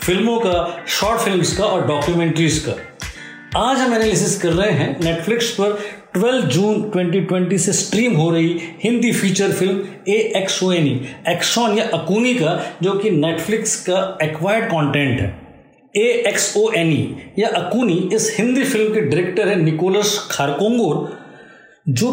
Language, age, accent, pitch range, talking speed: Hindi, 50-69, native, 165-220 Hz, 155 wpm